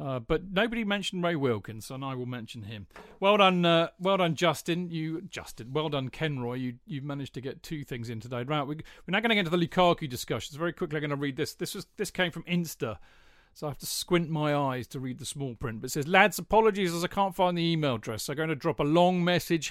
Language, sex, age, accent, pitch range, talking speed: English, male, 40-59, British, 135-175 Hz, 270 wpm